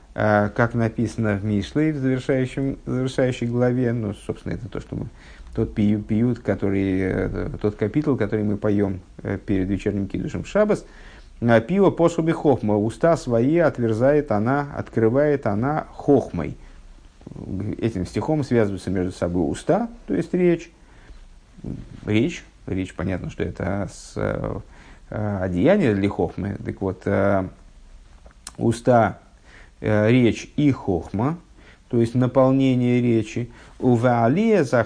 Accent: native